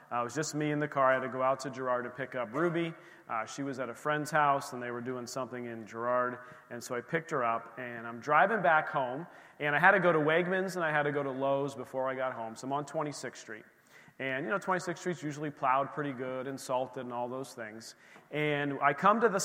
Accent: American